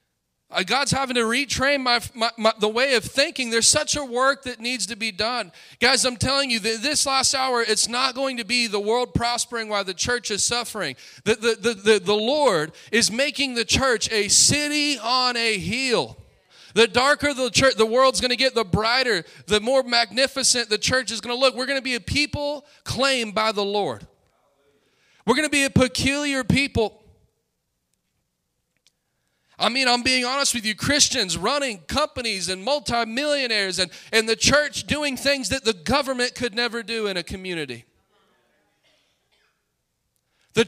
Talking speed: 180 wpm